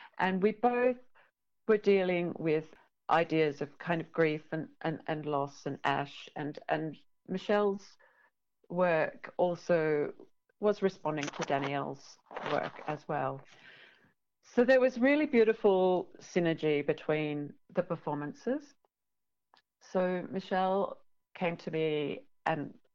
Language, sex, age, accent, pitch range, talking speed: English, female, 40-59, British, 145-185 Hz, 115 wpm